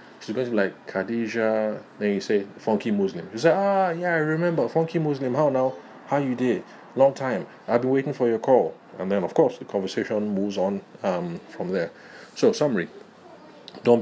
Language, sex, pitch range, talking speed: English, male, 95-125 Hz, 195 wpm